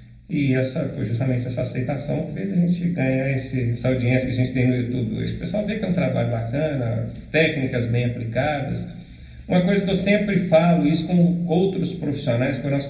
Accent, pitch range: Brazilian, 130-200 Hz